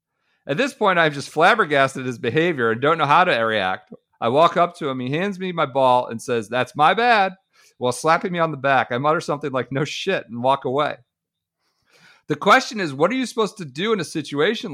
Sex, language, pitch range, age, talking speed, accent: male, English, 140-205 Hz, 40-59, 230 wpm, American